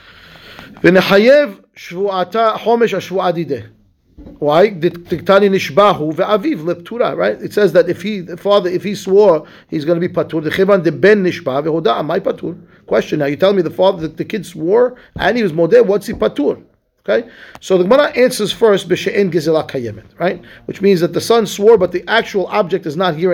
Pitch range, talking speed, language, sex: 170-220 Hz, 185 wpm, English, male